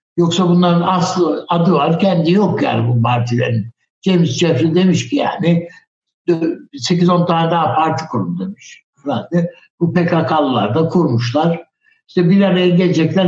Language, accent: Turkish, native